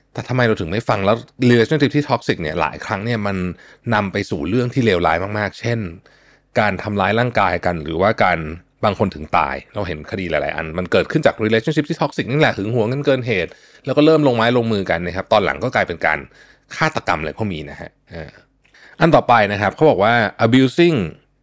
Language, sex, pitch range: Thai, male, 100-135 Hz